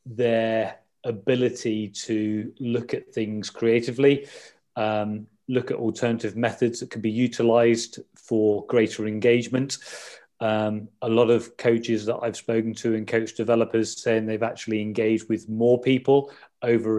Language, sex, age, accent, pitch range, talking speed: English, male, 30-49, British, 105-120 Hz, 140 wpm